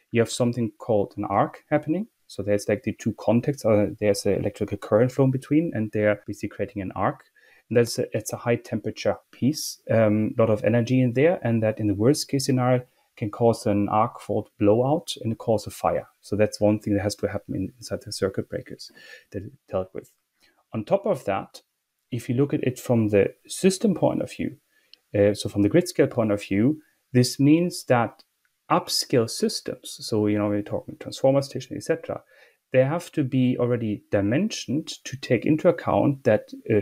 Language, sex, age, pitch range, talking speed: English, male, 30-49, 105-140 Hz, 200 wpm